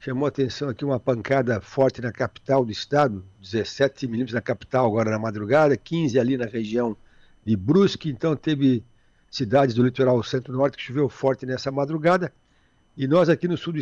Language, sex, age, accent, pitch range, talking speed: Portuguese, male, 60-79, Brazilian, 115-150 Hz, 175 wpm